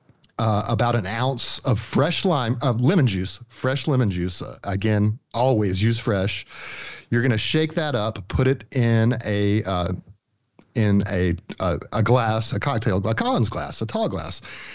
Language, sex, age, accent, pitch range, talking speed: English, male, 40-59, American, 105-130 Hz, 170 wpm